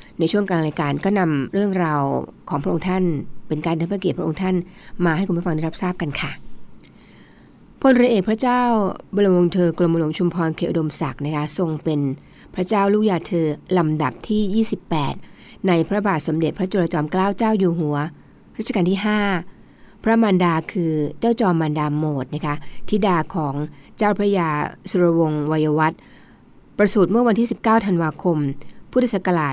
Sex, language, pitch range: female, Thai, 160-200 Hz